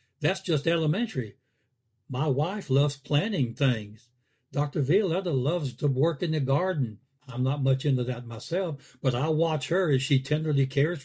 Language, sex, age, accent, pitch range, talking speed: English, male, 60-79, American, 125-155 Hz, 165 wpm